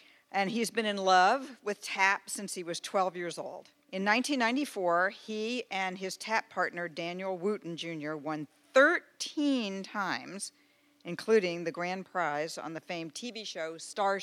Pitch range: 170-225 Hz